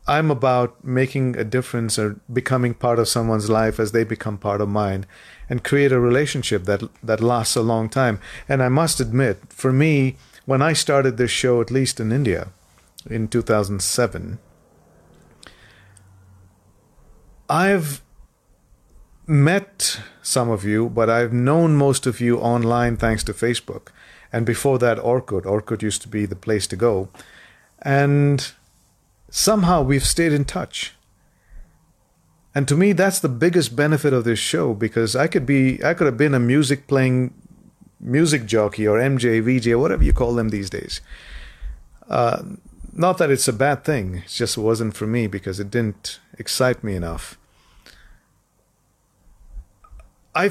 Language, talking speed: English, 150 wpm